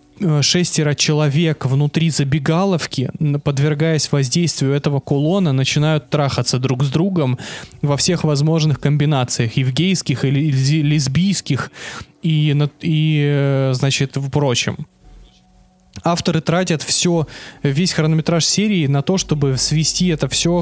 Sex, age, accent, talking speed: male, 20-39, native, 105 wpm